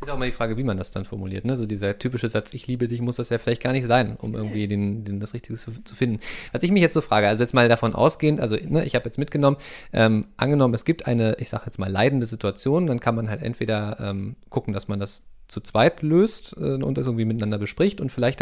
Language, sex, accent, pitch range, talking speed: German, male, German, 110-140 Hz, 270 wpm